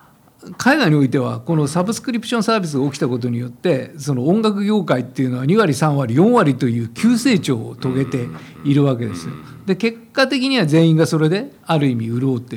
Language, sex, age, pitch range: Japanese, male, 50-69, 130-195 Hz